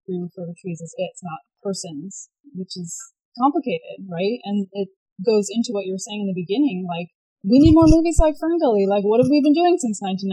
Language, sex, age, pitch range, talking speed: English, female, 20-39, 190-260 Hz, 225 wpm